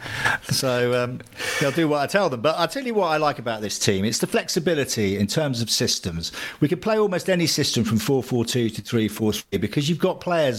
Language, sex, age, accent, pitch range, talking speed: English, male, 50-69, British, 110-155 Hz, 225 wpm